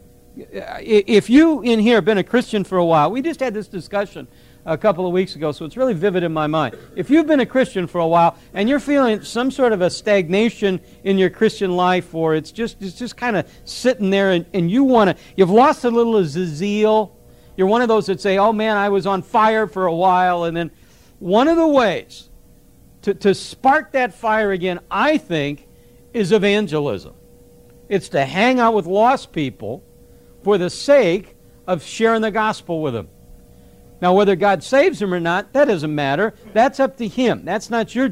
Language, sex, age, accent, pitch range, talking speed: English, male, 60-79, American, 180-240 Hz, 215 wpm